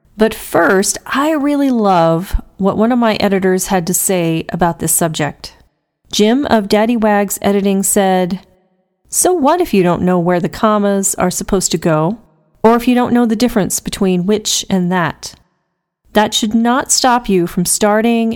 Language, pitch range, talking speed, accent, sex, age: English, 185-225 Hz, 175 wpm, American, female, 40-59